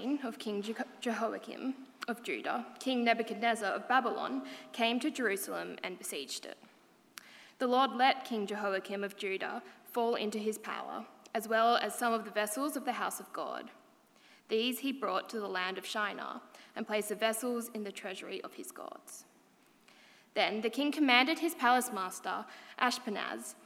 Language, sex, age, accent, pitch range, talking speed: English, female, 10-29, Australian, 215-255 Hz, 160 wpm